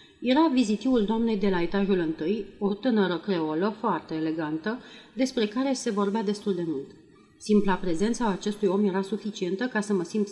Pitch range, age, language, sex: 180-220 Hz, 30-49, Romanian, female